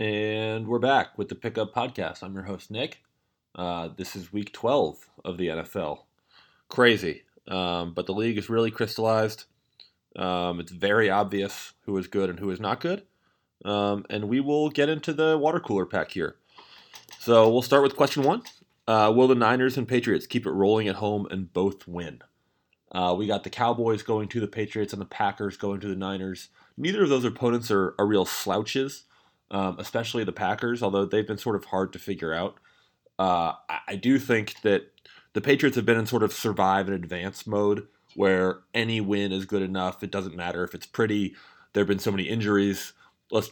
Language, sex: English, male